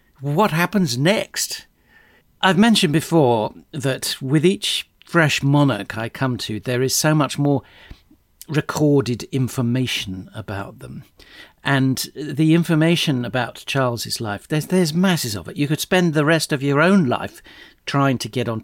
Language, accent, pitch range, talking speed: English, British, 110-145 Hz, 150 wpm